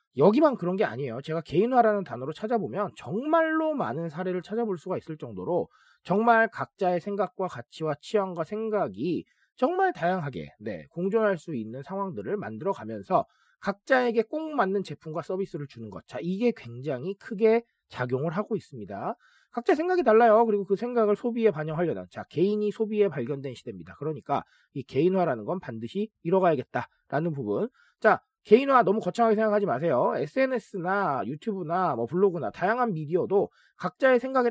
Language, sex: Korean, male